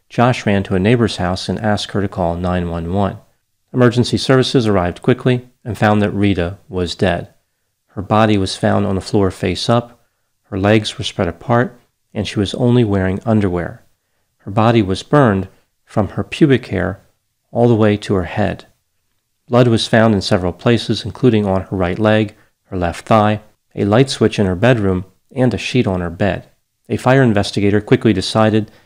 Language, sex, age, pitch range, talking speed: English, male, 40-59, 95-115 Hz, 180 wpm